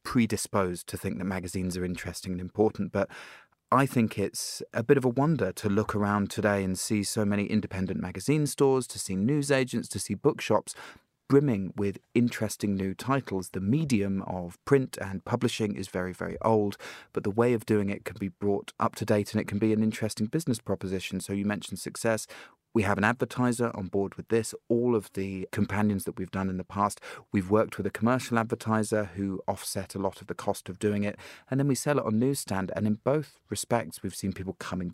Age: 30-49